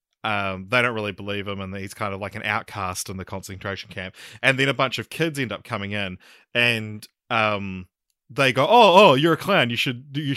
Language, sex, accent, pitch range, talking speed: English, male, Australian, 105-130 Hz, 225 wpm